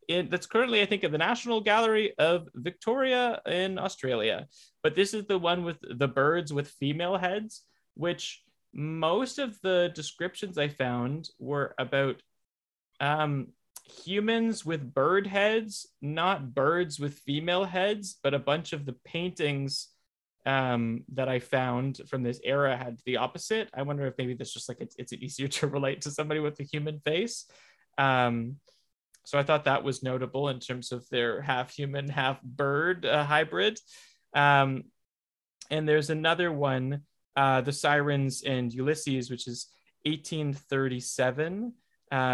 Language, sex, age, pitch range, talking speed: English, male, 20-39, 130-175 Hz, 145 wpm